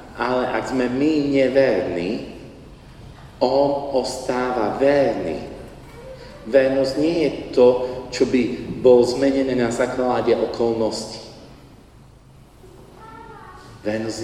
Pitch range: 125-140 Hz